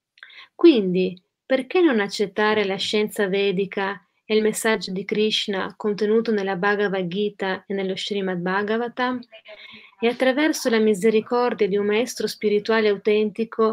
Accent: native